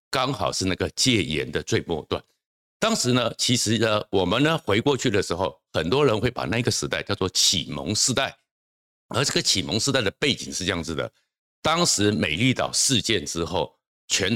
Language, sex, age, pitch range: Chinese, male, 60-79, 90-125 Hz